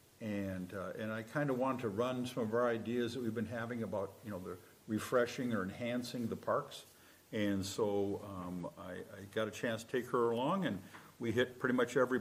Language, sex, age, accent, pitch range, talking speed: English, male, 50-69, American, 105-125 Hz, 215 wpm